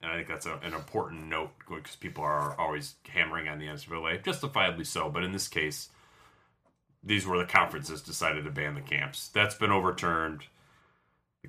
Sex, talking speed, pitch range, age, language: male, 185 wpm, 80-110 Hz, 30-49, English